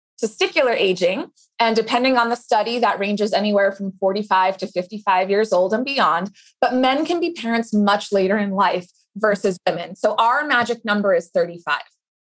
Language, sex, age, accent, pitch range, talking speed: English, female, 20-39, American, 200-260 Hz, 170 wpm